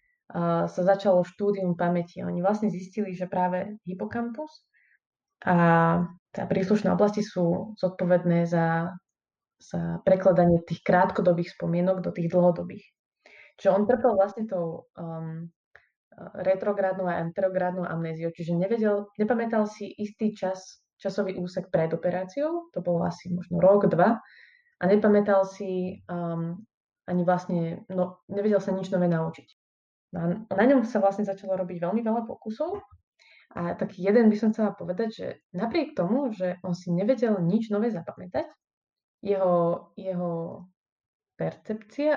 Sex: female